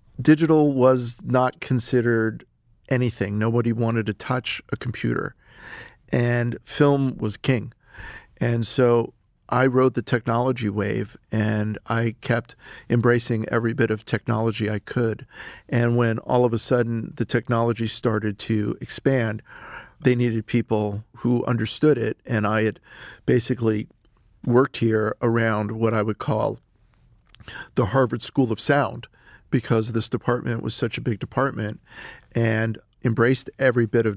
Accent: American